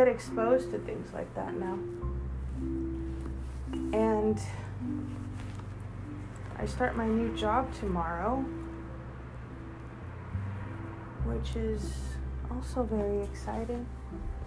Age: 30-49